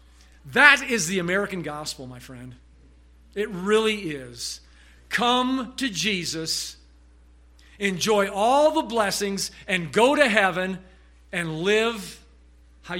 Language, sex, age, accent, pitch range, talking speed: English, male, 50-69, American, 160-255 Hz, 110 wpm